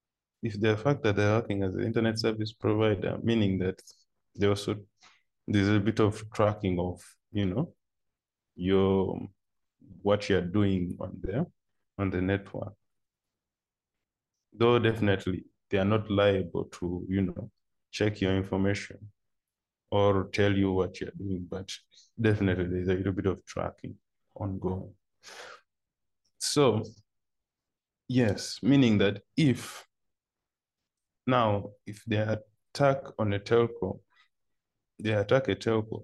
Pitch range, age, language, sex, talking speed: 95-110 Hz, 20-39, English, male, 125 wpm